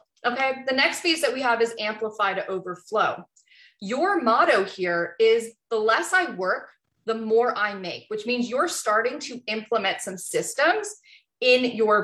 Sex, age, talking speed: female, 20-39, 165 wpm